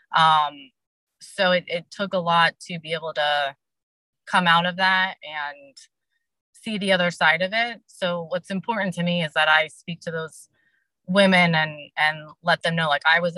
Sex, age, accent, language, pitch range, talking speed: female, 20-39, American, English, 155-185 Hz, 190 wpm